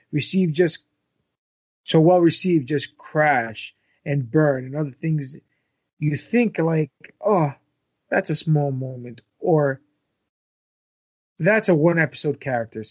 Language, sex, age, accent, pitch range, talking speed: English, male, 30-49, American, 135-175 Hz, 110 wpm